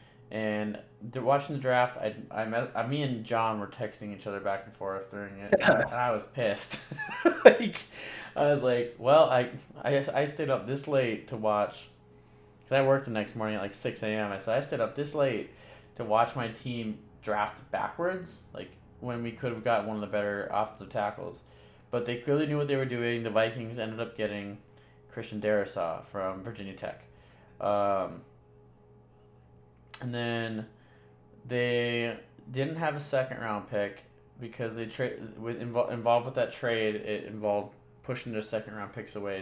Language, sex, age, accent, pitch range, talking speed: English, male, 20-39, American, 100-125 Hz, 185 wpm